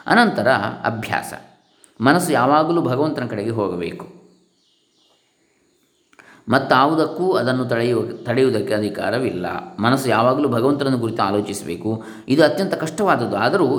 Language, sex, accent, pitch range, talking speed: Kannada, male, native, 110-150 Hz, 100 wpm